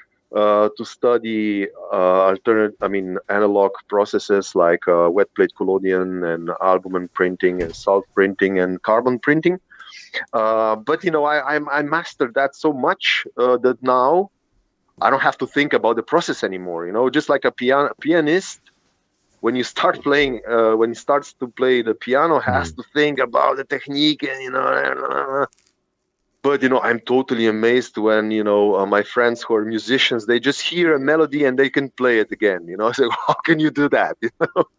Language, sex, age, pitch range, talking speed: English, male, 30-49, 105-135 Hz, 195 wpm